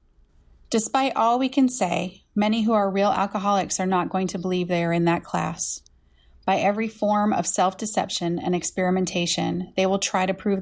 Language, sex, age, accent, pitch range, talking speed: English, female, 30-49, American, 175-210 Hz, 180 wpm